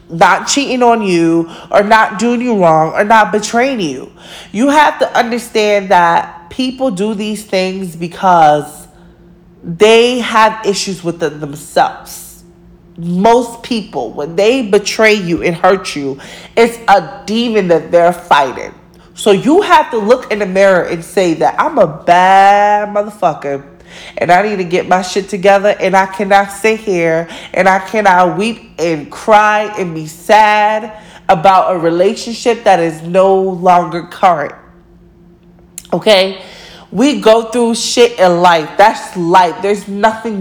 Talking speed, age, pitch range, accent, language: 150 wpm, 20-39, 175-215 Hz, American, English